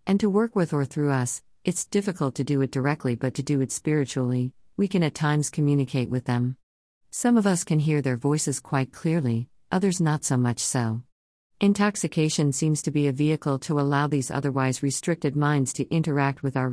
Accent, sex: American, female